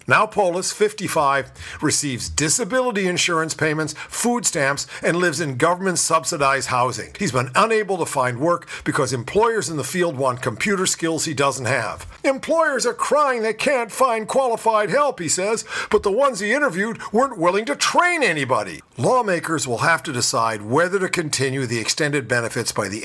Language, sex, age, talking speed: English, male, 50-69, 165 wpm